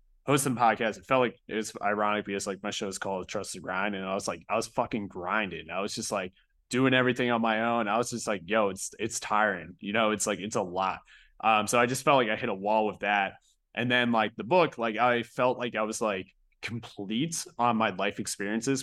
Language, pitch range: English, 105-120 Hz